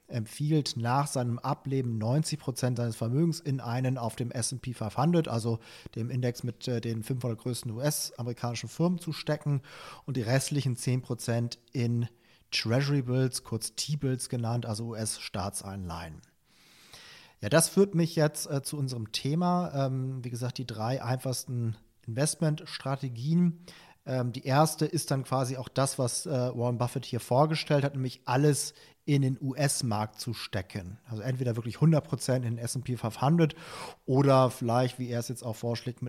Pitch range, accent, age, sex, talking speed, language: 115-140 Hz, German, 40-59, male, 150 wpm, German